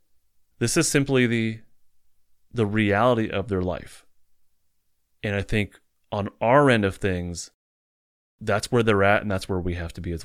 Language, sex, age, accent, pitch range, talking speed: English, male, 30-49, American, 90-110 Hz, 170 wpm